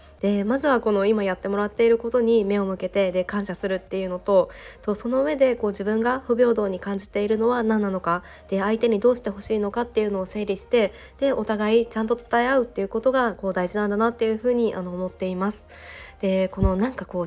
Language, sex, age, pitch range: Japanese, female, 20-39, 185-220 Hz